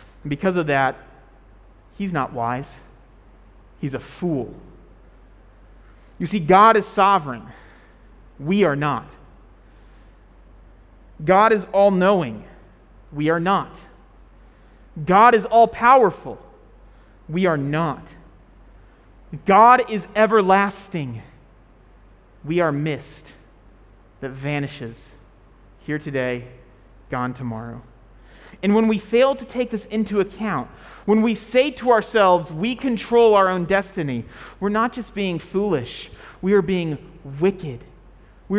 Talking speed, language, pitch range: 110 wpm, English, 120-200 Hz